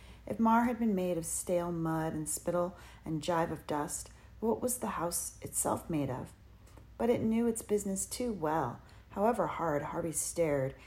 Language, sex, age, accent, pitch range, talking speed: English, female, 40-59, American, 150-180 Hz, 175 wpm